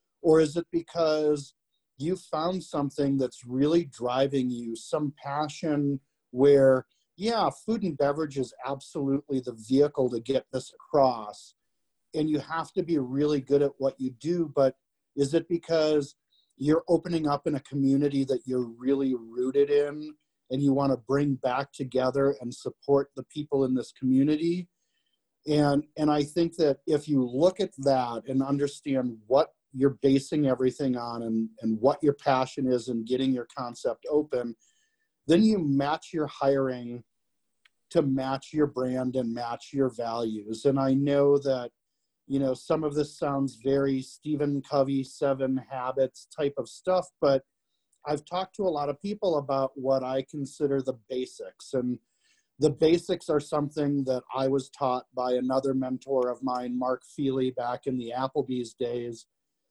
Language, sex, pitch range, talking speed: English, male, 130-150 Hz, 160 wpm